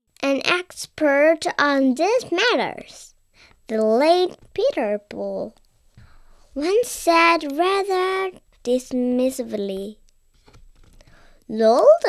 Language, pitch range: Chinese, 275-360 Hz